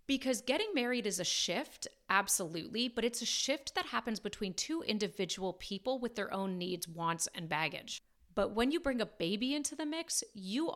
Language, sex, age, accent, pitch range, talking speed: English, female, 30-49, American, 190-275 Hz, 190 wpm